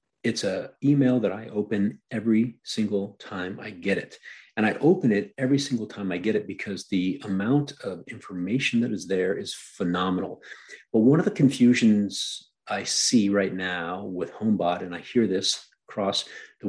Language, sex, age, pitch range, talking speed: English, male, 40-59, 95-120 Hz, 175 wpm